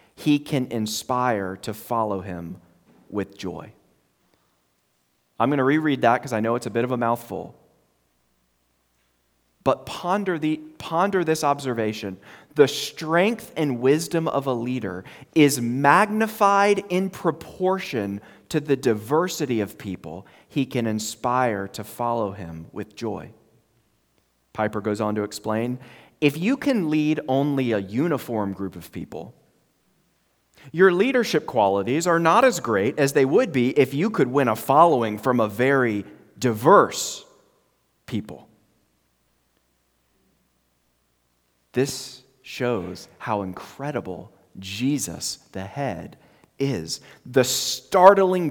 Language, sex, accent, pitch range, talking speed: English, male, American, 95-145 Hz, 120 wpm